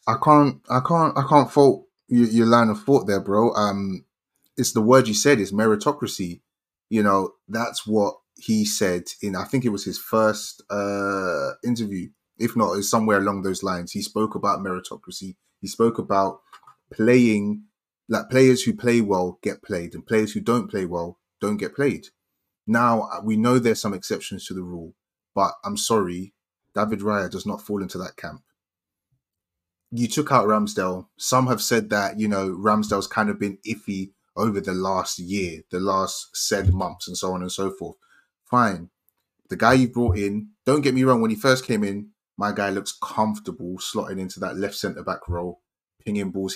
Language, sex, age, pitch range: English, male, 30-49, 95-120 Hz